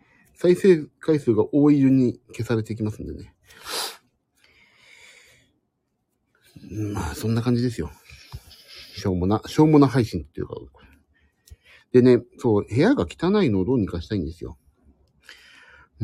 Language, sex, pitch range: Japanese, male, 95-155 Hz